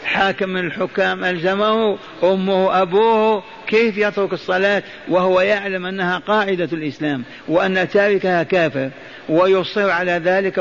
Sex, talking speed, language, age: male, 105 wpm, Arabic, 50-69